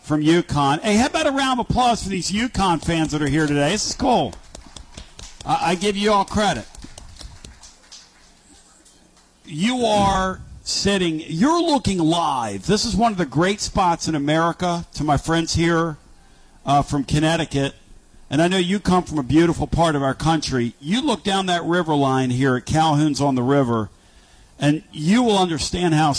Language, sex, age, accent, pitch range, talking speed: English, male, 50-69, American, 150-190 Hz, 175 wpm